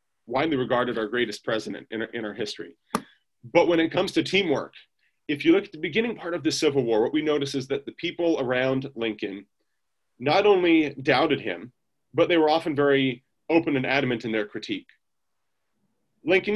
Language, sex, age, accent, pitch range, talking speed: English, male, 30-49, American, 125-155 Hz, 190 wpm